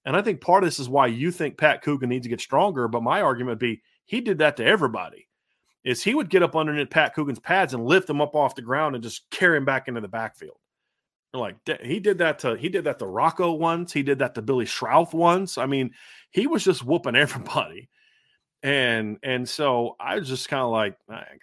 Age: 30-49